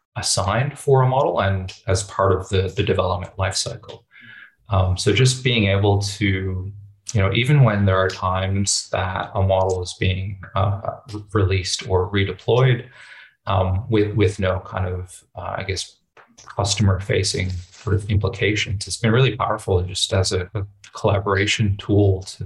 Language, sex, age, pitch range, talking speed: English, male, 30-49, 95-105 Hz, 160 wpm